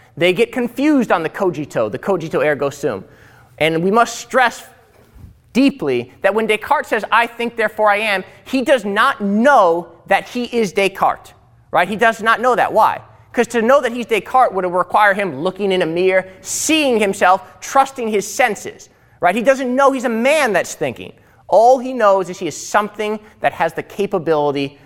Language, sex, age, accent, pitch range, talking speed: English, male, 20-39, American, 150-235 Hz, 185 wpm